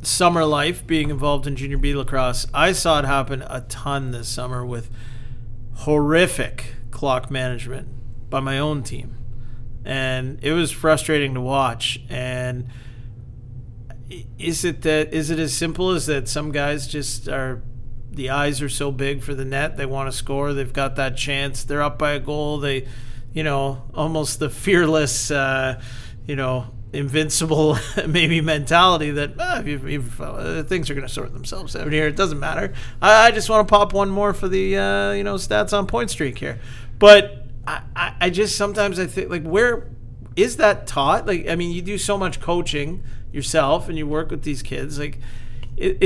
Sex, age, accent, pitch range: male, 40-59, American, 125-160 Hz